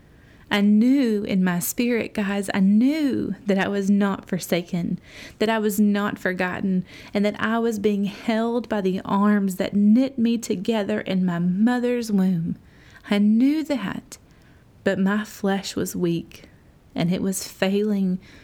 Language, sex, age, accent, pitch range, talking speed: English, female, 30-49, American, 180-220 Hz, 155 wpm